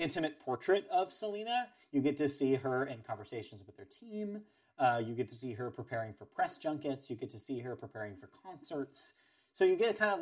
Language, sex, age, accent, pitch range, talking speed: English, male, 30-49, American, 120-165 Hz, 215 wpm